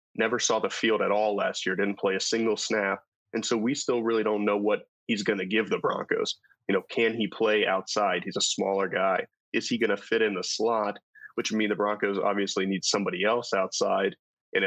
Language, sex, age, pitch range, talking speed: English, male, 20-39, 100-105 Hz, 230 wpm